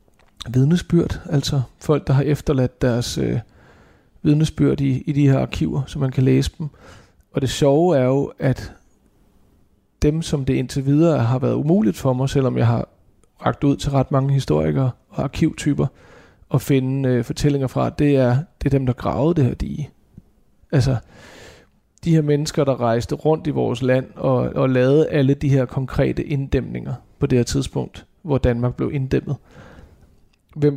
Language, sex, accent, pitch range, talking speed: Danish, male, native, 125-150 Hz, 170 wpm